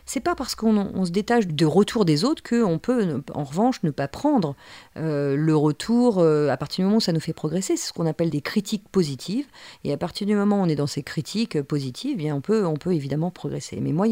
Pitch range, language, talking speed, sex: 150-210 Hz, French, 260 wpm, female